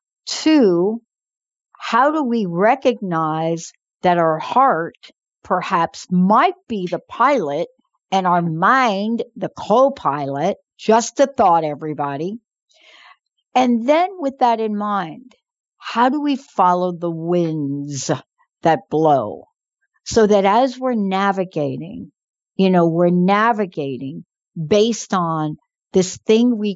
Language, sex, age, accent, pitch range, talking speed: English, female, 60-79, American, 170-235 Hz, 115 wpm